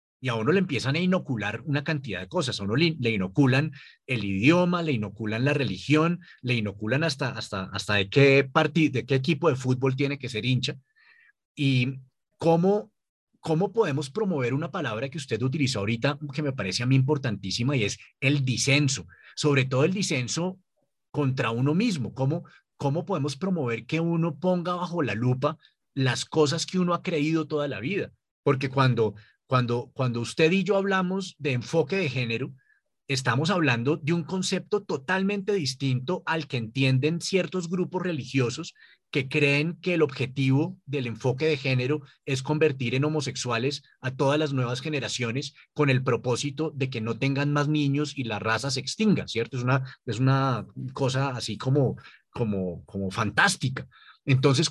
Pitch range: 125-160 Hz